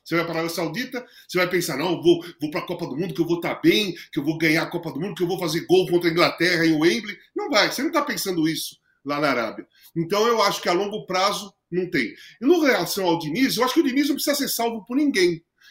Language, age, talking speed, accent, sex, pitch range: Portuguese, 40-59, 300 wpm, Brazilian, male, 175-270 Hz